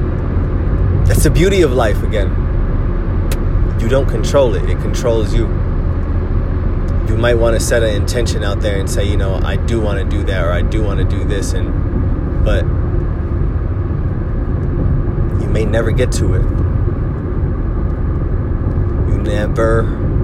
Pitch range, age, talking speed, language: 90-110 Hz, 30-49, 145 wpm, English